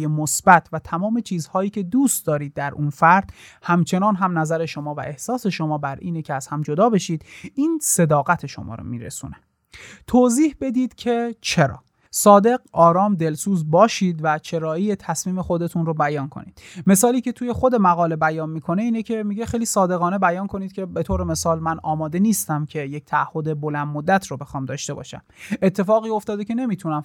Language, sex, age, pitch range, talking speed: Persian, male, 30-49, 155-210 Hz, 175 wpm